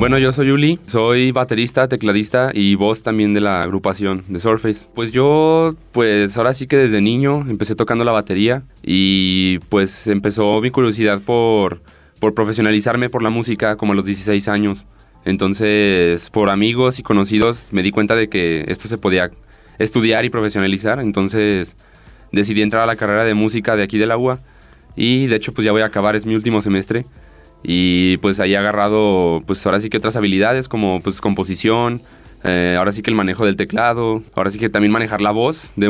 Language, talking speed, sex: Spanish, 190 wpm, male